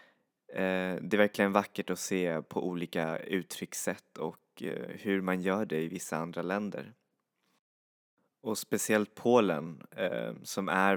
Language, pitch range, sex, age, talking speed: Swedish, 90-100 Hz, male, 20-39, 125 wpm